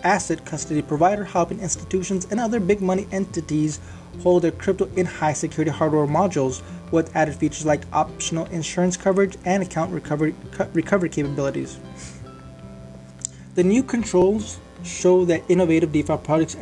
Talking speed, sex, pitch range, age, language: 130 wpm, male, 145-175 Hz, 20-39, English